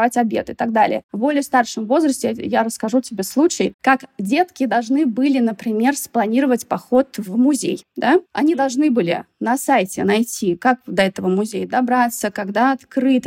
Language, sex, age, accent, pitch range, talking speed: Russian, female, 20-39, native, 220-275 Hz, 160 wpm